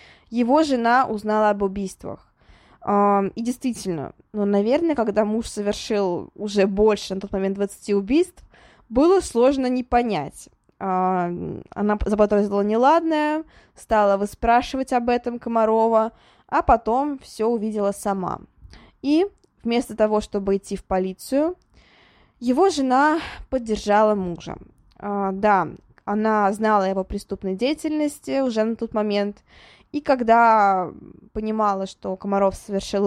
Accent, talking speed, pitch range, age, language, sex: native, 115 wpm, 195-245 Hz, 20-39, Russian, female